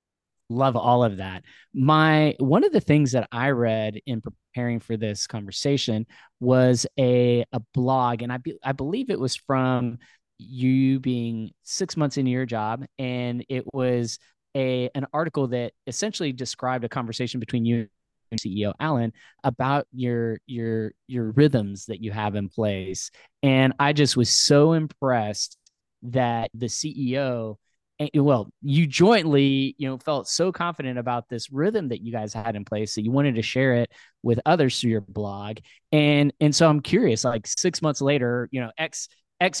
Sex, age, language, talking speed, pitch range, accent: male, 20-39, English, 170 wpm, 115-140 Hz, American